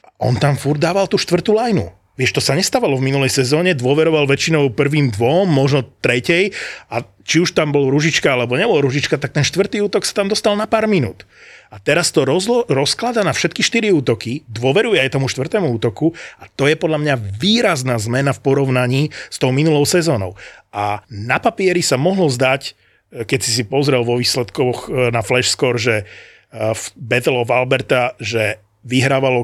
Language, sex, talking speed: Slovak, male, 180 wpm